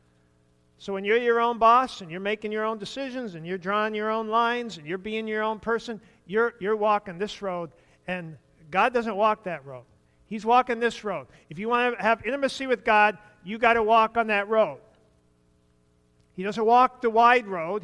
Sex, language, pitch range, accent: male, English, 170-220 Hz, American